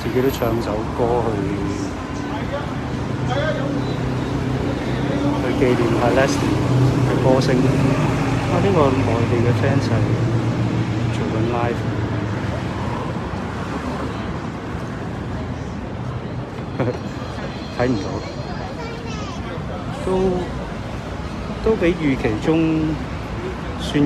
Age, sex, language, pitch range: 60-79, male, Chinese, 110-135 Hz